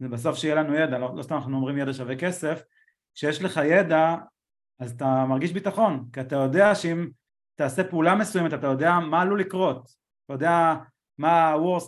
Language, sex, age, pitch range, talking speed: Hebrew, male, 30-49, 135-175 Hz, 175 wpm